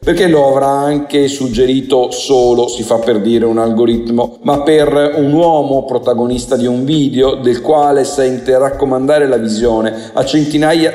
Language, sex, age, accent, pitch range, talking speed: Italian, male, 50-69, native, 115-145 Hz, 155 wpm